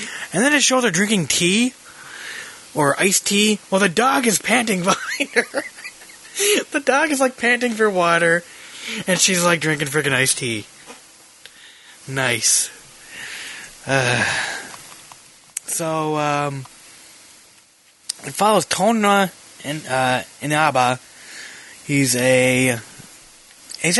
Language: English